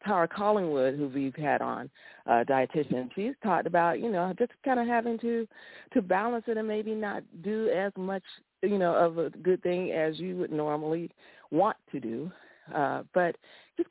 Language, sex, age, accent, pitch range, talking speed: English, female, 40-59, American, 150-190 Hz, 185 wpm